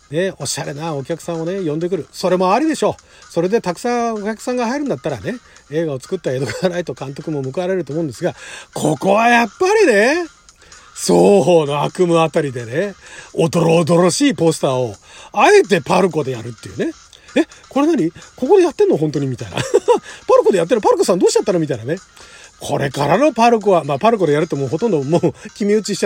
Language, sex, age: Japanese, male, 40-59